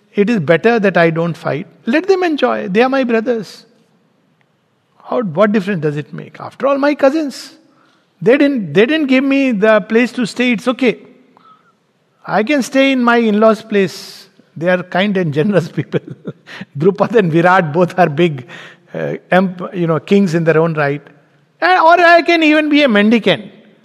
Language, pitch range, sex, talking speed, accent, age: English, 155-225 Hz, male, 180 wpm, Indian, 60-79